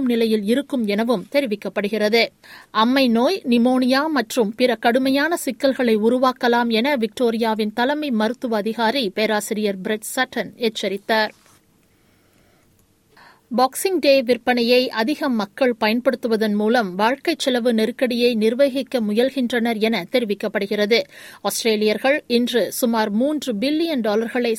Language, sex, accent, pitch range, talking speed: Tamil, female, native, 220-265 Hz, 95 wpm